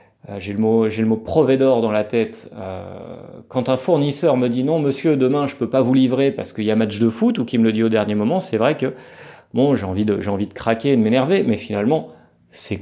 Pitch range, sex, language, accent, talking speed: 110-130 Hz, male, French, French, 260 wpm